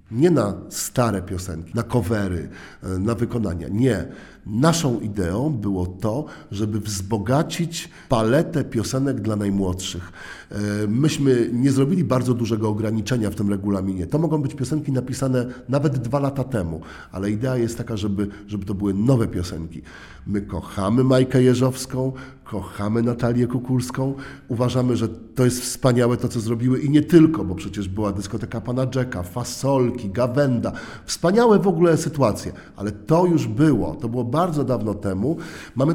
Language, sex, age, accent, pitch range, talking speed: Polish, male, 50-69, native, 100-130 Hz, 145 wpm